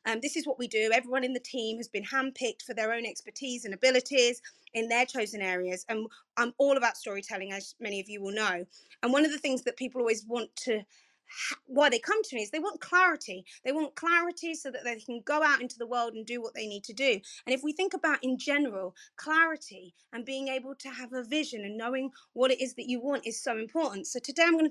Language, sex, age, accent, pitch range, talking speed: English, female, 30-49, British, 230-305 Hz, 250 wpm